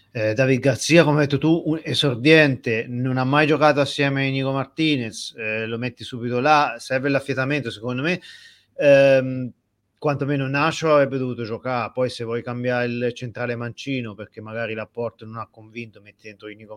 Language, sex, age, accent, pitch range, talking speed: Italian, male, 30-49, native, 110-135 Hz, 170 wpm